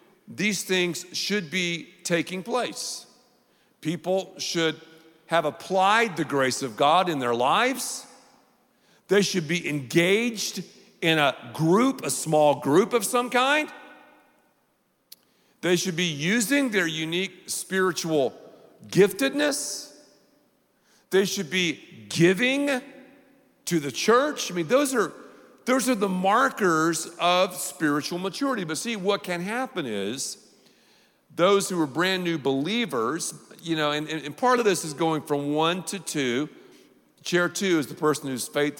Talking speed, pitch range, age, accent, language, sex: 135 wpm, 155-220 Hz, 50-69, American, English, male